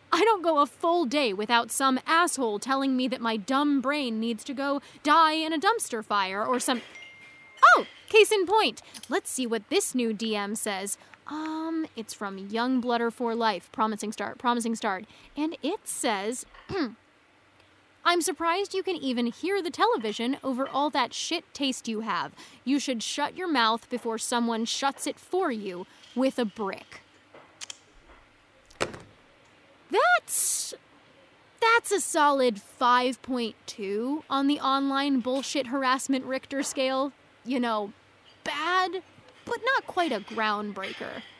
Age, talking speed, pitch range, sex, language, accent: 10-29, 145 wpm, 235-325 Hz, female, English, American